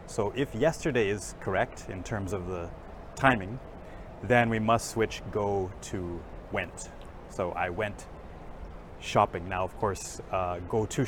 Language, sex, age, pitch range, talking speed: English, male, 30-49, 90-115 Hz, 145 wpm